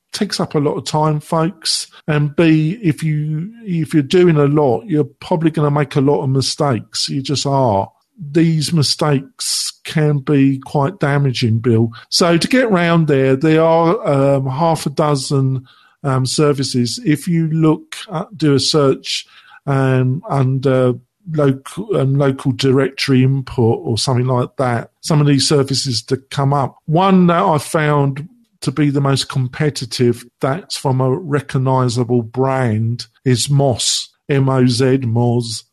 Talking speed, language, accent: 155 wpm, English, British